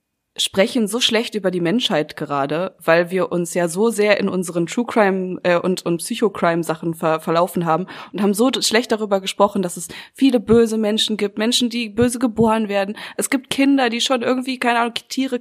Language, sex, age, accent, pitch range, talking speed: German, female, 20-39, German, 185-225 Hz, 200 wpm